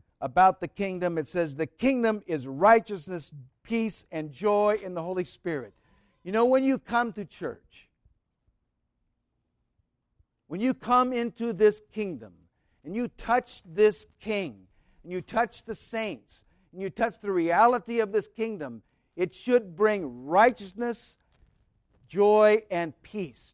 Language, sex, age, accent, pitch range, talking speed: English, male, 50-69, American, 135-210 Hz, 140 wpm